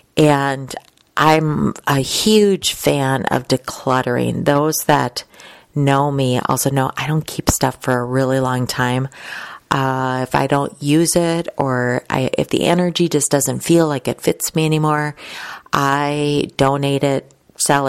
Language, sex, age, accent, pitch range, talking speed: English, female, 30-49, American, 130-150 Hz, 150 wpm